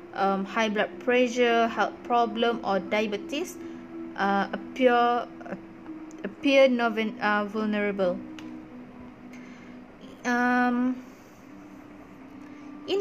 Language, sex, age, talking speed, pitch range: English, female, 20-39, 75 wpm, 195-245 Hz